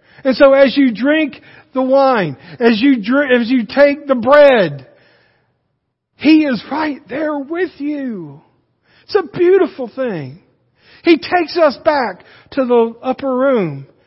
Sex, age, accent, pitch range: male, 50-69, American, 145-240 Hz